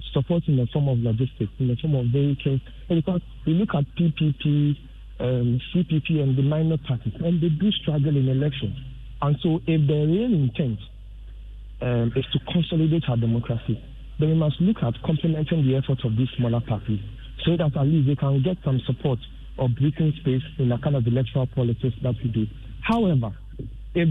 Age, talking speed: 50-69, 190 wpm